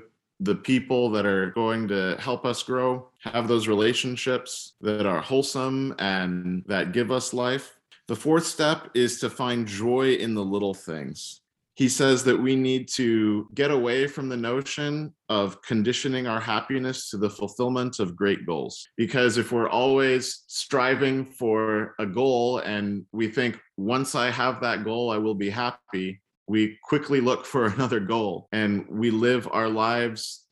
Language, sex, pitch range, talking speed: English, male, 110-130 Hz, 165 wpm